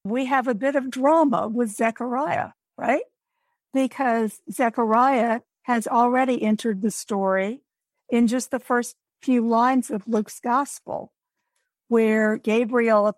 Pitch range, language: 225-280 Hz, English